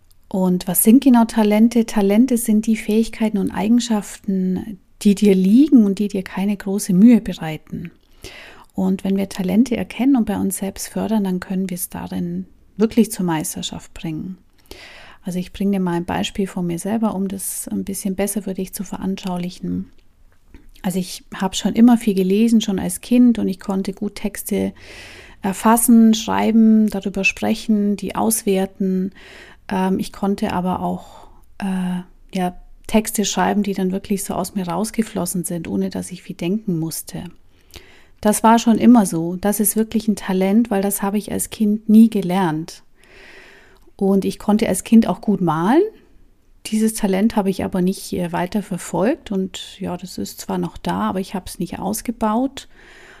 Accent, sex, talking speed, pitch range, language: German, female, 165 wpm, 185-215 Hz, German